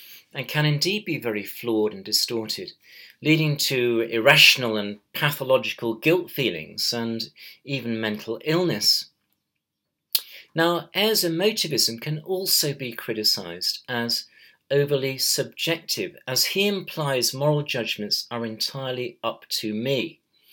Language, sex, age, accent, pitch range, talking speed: English, male, 40-59, British, 115-155 Hz, 115 wpm